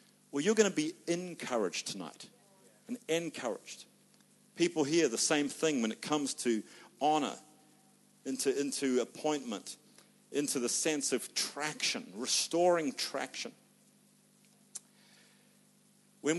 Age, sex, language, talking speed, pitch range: 50-69, male, English, 110 wpm, 145-215 Hz